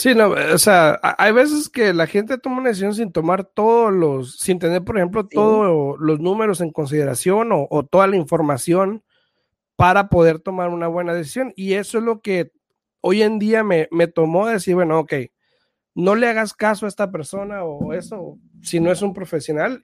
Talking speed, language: 195 wpm, Spanish